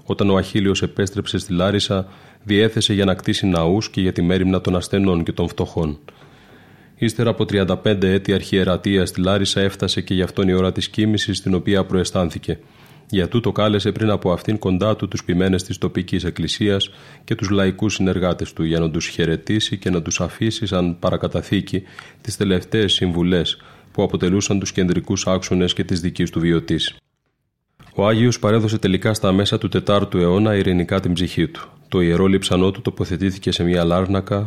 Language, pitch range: Greek, 90-105 Hz